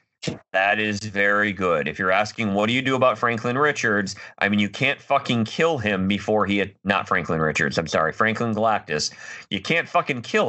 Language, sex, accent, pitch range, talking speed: English, male, American, 95-115 Hz, 200 wpm